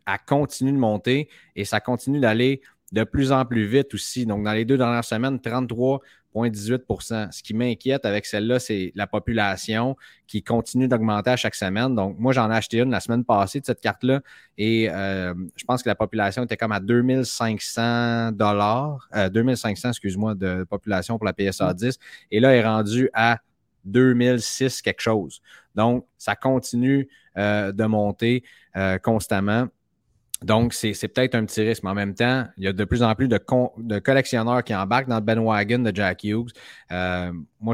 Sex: male